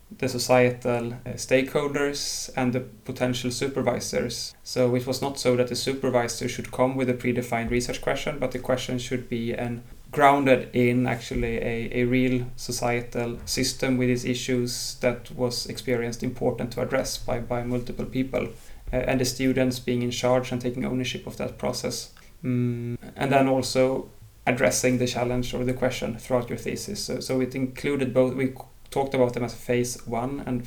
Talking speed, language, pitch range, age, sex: 170 wpm, English, 120-130 Hz, 30-49, male